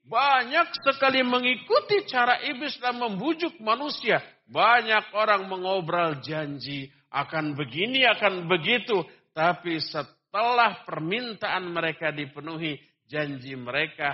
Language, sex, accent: Indonesian, male, native